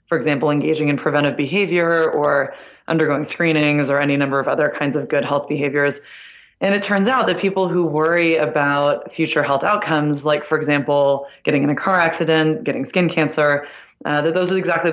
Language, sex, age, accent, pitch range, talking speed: English, female, 20-39, American, 145-165 Hz, 190 wpm